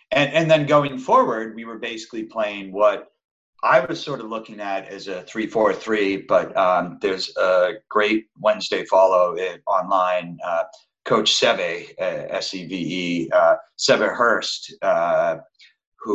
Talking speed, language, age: 150 wpm, English, 40-59